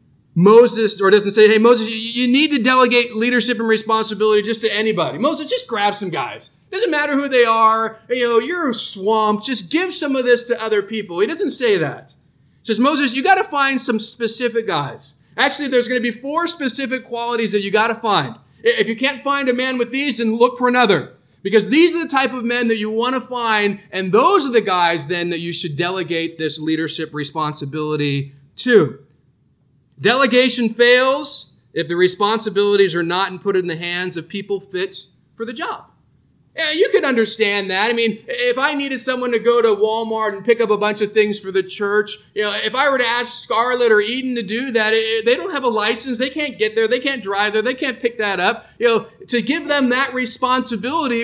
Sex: male